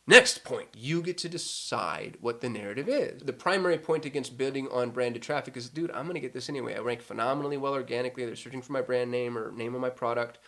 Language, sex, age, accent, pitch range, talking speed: English, male, 20-39, American, 125-165 Hz, 235 wpm